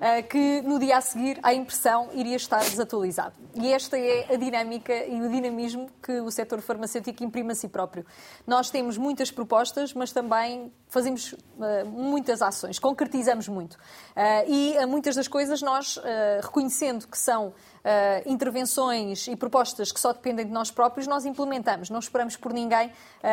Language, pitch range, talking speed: Portuguese, 230-260 Hz, 155 wpm